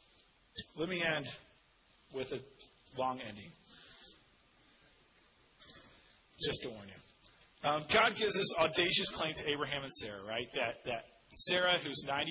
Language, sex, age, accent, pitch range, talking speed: English, male, 30-49, American, 130-180 Hz, 130 wpm